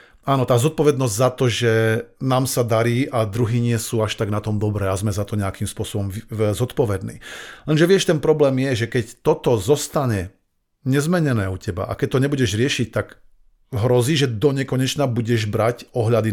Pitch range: 110-135 Hz